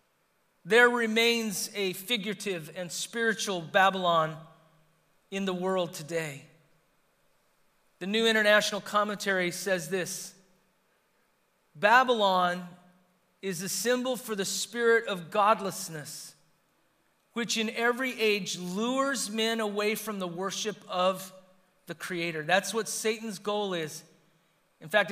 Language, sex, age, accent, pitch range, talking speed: English, male, 40-59, American, 170-215 Hz, 110 wpm